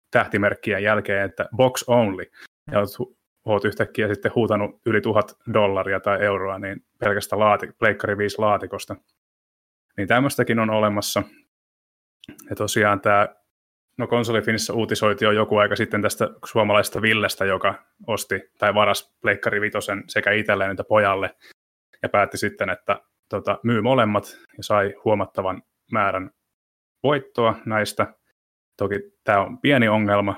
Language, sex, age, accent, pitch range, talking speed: Finnish, male, 20-39, native, 100-110 Hz, 130 wpm